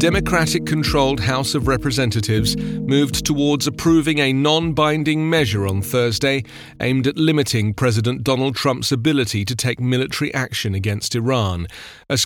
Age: 40-59